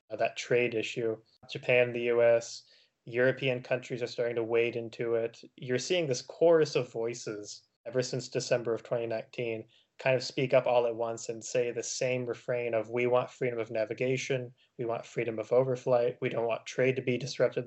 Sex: male